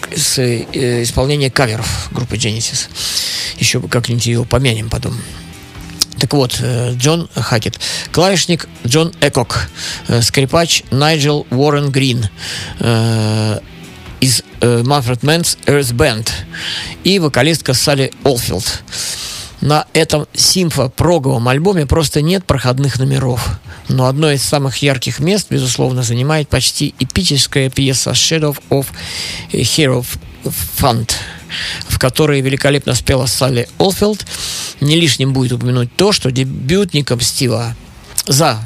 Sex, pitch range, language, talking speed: male, 115-145 Hz, Russian, 105 wpm